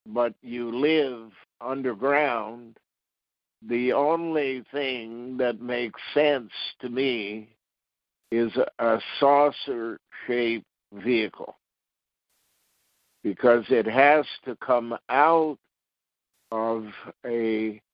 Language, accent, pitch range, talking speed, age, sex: English, American, 110-125 Hz, 80 wpm, 50-69, male